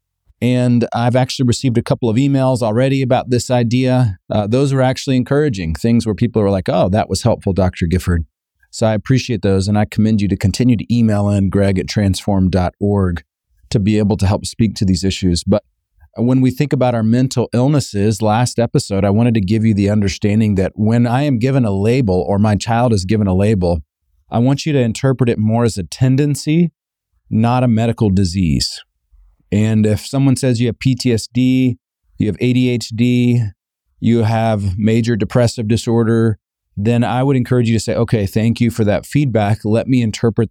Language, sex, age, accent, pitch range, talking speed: English, male, 40-59, American, 100-125 Hz, 190 wpm